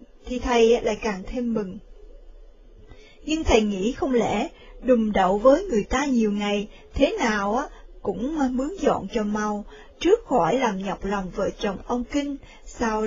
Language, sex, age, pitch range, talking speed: Vietnamese, female, 20-39, 210-280 Hz, 165 wpm